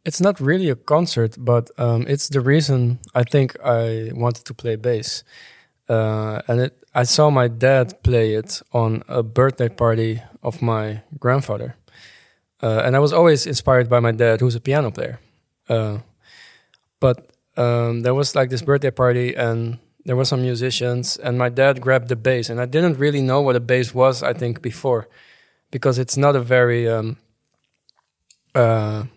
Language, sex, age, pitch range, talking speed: English, male, 20-39, 120-135 Hz, 175 wpm